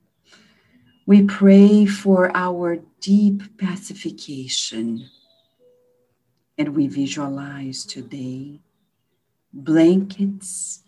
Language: English